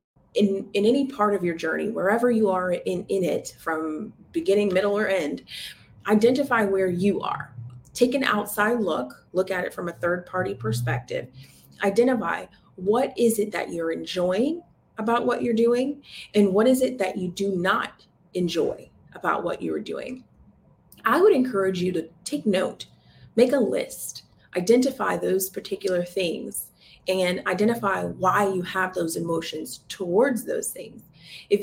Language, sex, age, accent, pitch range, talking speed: English, female, 30-49, American, 175-225 Hz, 155 wpm